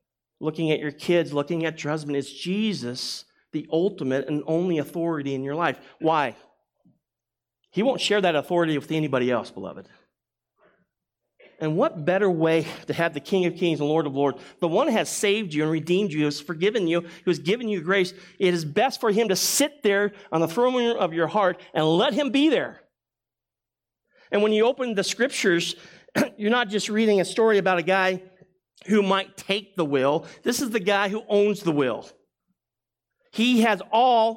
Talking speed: 195 wpm